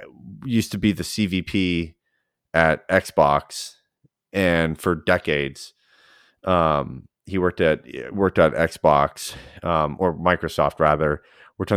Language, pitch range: English, 85-105 Hz